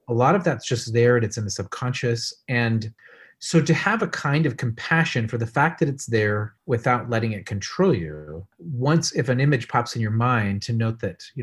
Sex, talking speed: male, 220 wpm